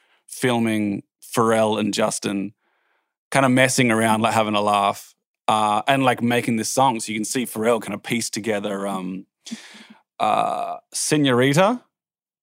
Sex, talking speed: male, 145 wpm